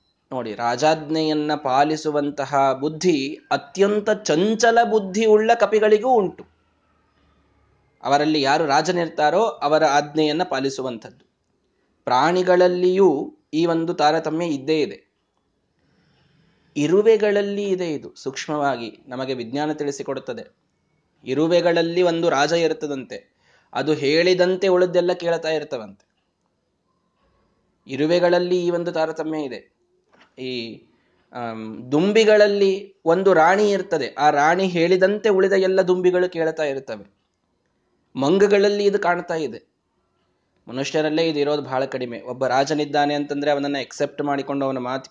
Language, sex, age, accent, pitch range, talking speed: Kannada, male, 20-39, native, 135-185 Hz, 95 wpm